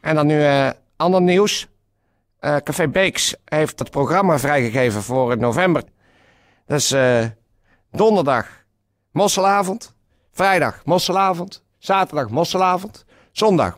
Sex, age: male, 60-79